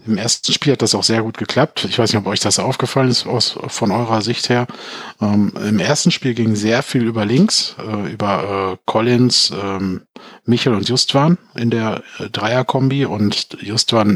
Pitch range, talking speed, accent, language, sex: 105-120 Hz, 165 wpm, German, German, male